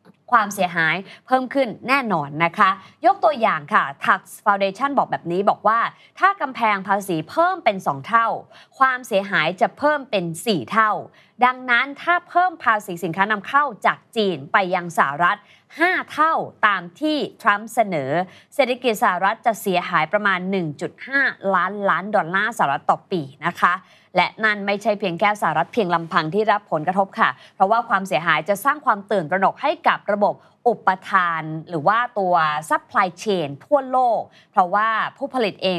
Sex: female